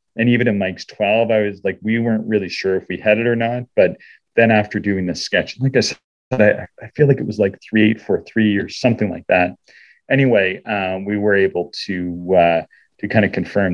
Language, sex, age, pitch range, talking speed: English, male, 40-59, 95-115 Hz, 220 wpm